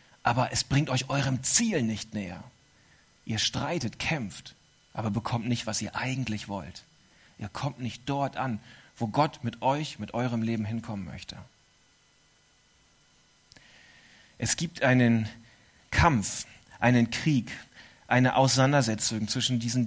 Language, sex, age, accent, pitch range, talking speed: German, male, 40-59, German, 110-145 Hz, 125 wpm